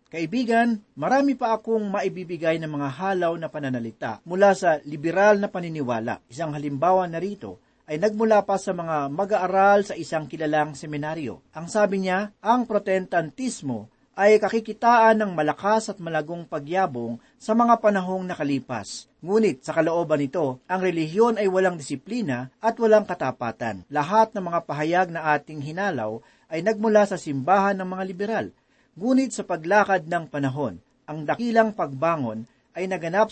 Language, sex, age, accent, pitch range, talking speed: Filipino, male, 40-59, native, 155-215 Hz, 145 wpm